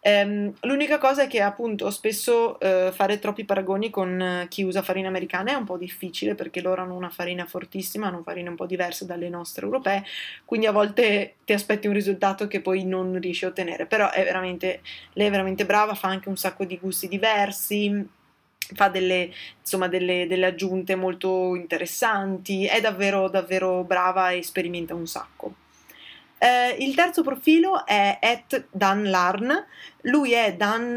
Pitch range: 180-205 Hz